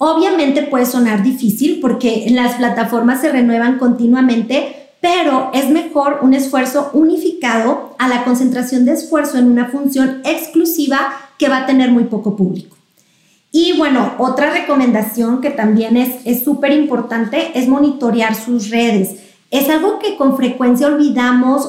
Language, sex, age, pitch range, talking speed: Spanish, female, 30-49, 235-285 Hz, 145 wpm